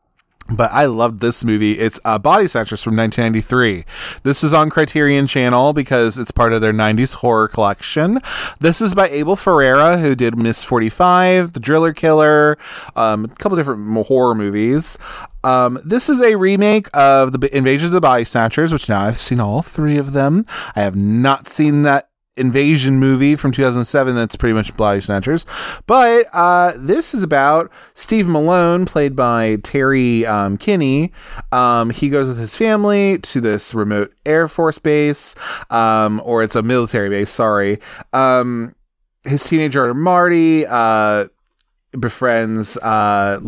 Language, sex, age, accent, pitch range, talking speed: English, male, 20-39, American, 110-155 Hz, 160 wpm